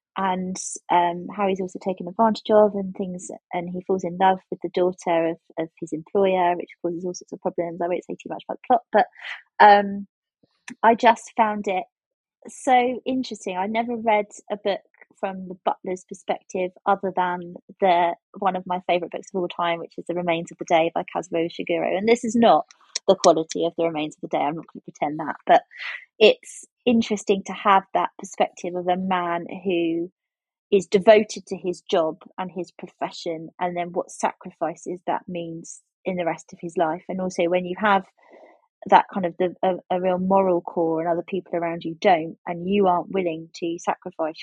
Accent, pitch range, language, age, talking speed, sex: British, 170-200 Hz, English, 20-39, 200 wpm, female